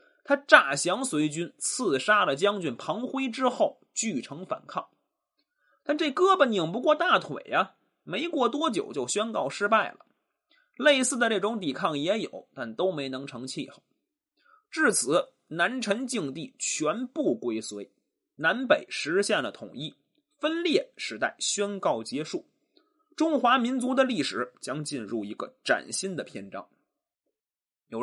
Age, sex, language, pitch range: 20-39, male, Chinese, 190-310 Hz